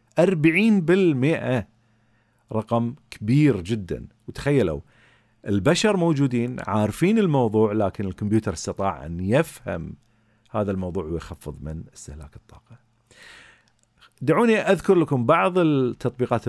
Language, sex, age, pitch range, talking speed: Arabic, male, 40-59, 105-135 Hz, 90 wpm